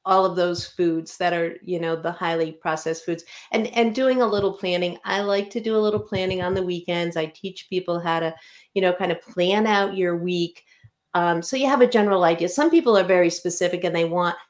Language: English